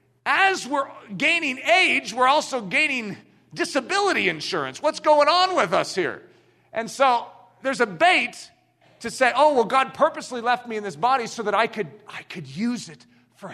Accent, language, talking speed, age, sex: American, English, 175 wpm, 50-69, male